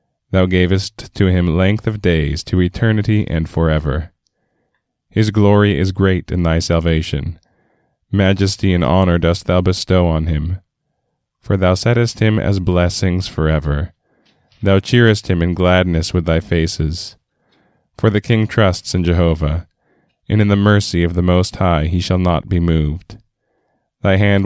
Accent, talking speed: American, 150 wpm